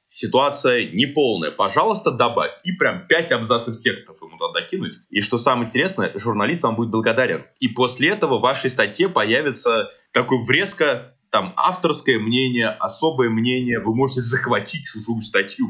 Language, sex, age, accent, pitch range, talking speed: Russian, male, 20-39, native, 115-145 Hz, 150 wpm